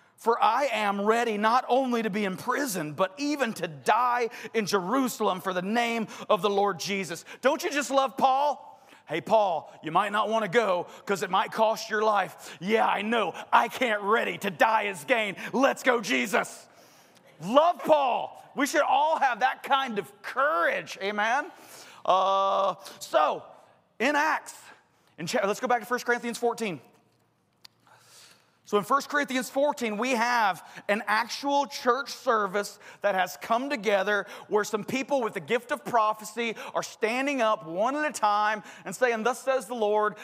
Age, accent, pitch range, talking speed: 30-49, American, 200-250 Hz, 170 wpm